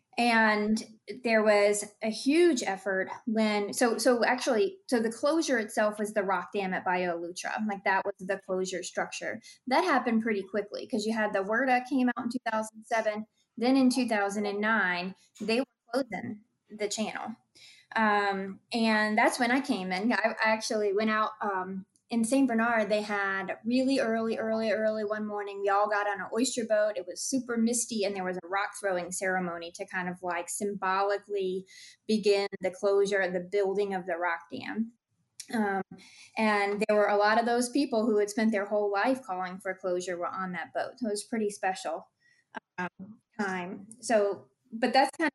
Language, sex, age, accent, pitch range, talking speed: English, female, 20-39, American, 195-235 Hz, 180 wpm